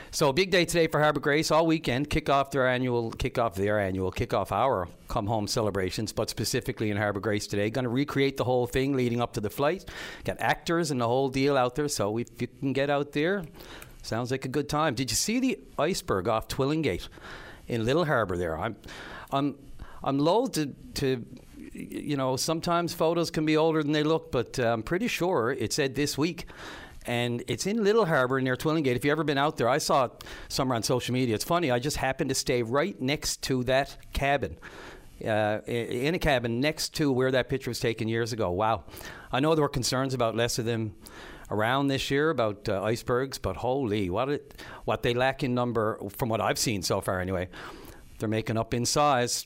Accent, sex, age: American, male, 50-69